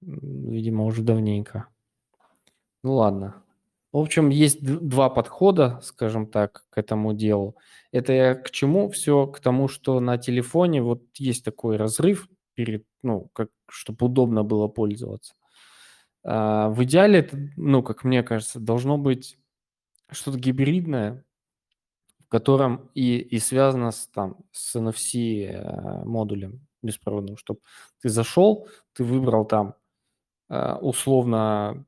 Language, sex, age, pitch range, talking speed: Russian, male, 20-39, 110-135 Hz, 120 wpm